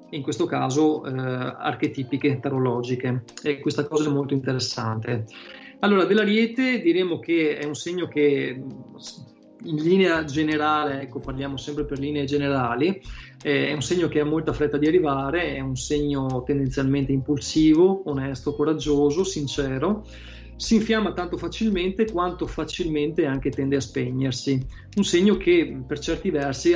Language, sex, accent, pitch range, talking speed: Italian, male, native, 135-170 Hz, 140 wpm